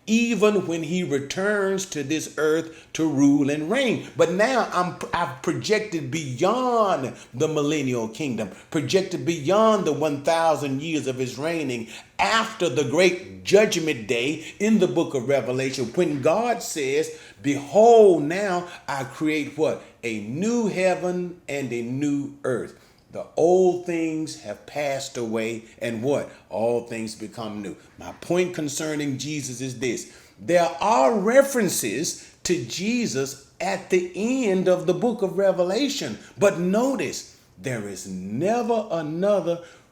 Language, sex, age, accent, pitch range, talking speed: English, male, 40-59, American, 140-195 Hz, 135 wpm